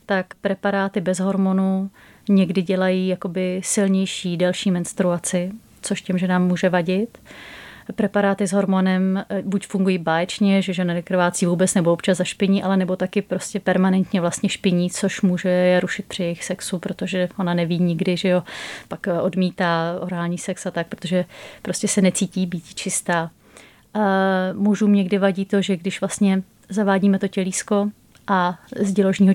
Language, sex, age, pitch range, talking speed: Czech, female, 30-49, 185-200 Hz, 150 wpm